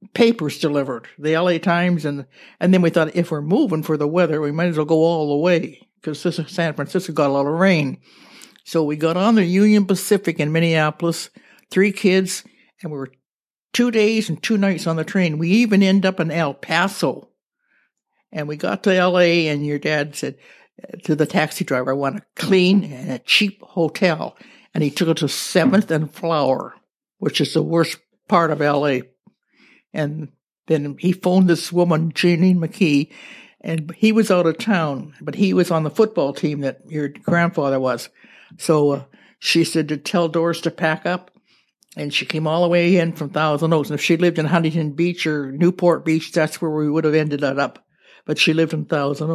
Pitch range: 150-180 Hz